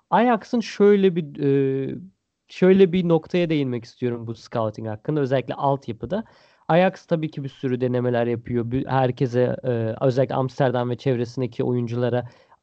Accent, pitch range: native, 125-170 Hz